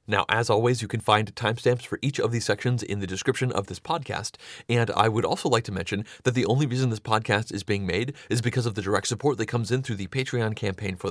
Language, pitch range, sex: English, 100-125 Hz, male